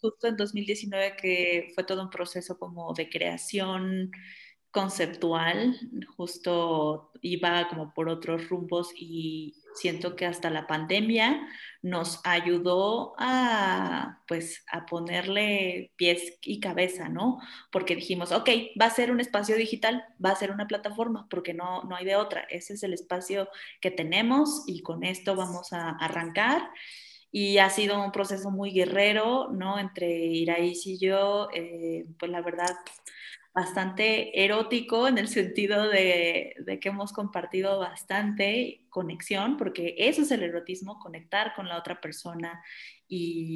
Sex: female